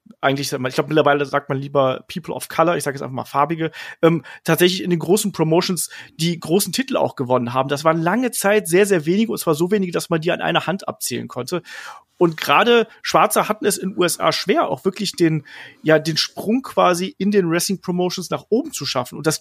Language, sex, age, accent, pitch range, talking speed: German, male, 30-49, German, 145-185 Hz, 225 wpm